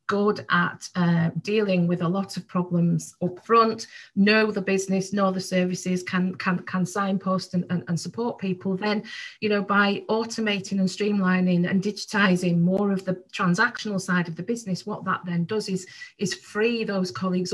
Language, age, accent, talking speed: English, 40-59, British, 180 wpm